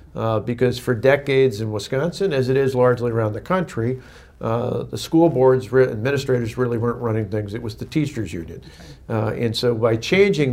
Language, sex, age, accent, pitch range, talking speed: English, male, 50-69, American, 115-130 Hz, 190 wpm